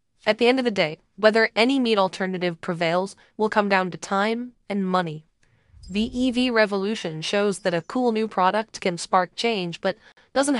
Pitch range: 180-225 Hz